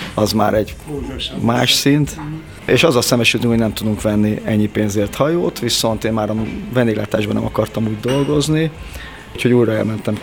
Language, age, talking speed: Hungarian, 30-49, 165 wpm